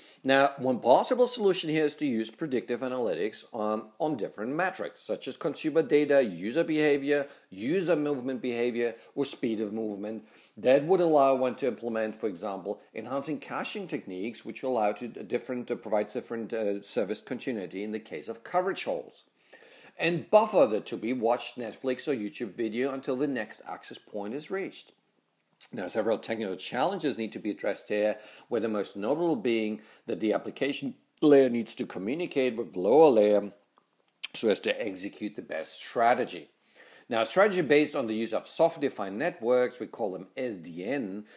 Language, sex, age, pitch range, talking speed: English, male, 50-69, 110-145 Hz, 170 wpm